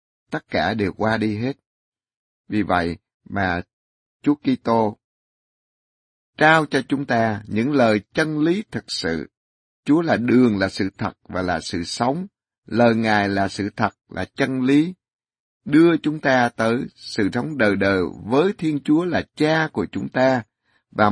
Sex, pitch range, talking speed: male, 105-140 Hz, 160 wpm